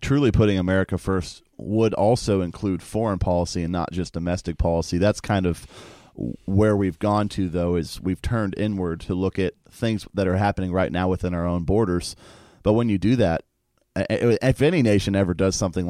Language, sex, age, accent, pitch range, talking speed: English, male, 30-49, American, 90-105 Hz, 190 wpm